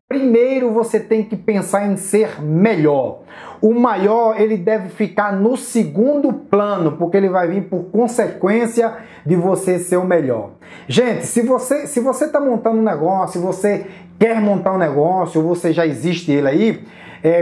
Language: Portuguese